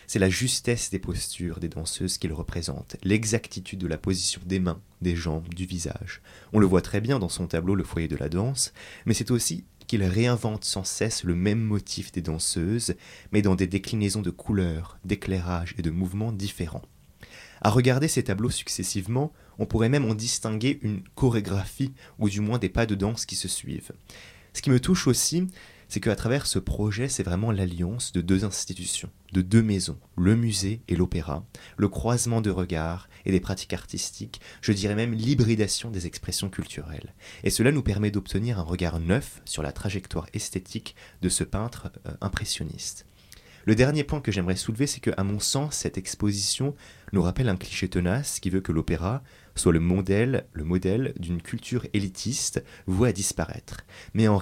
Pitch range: 90-115 Hz